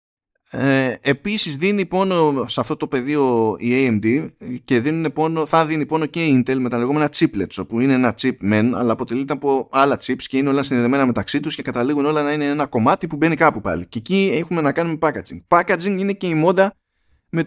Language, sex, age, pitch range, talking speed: Greek, male, 20-39, 115-160 Hz, 205 wpm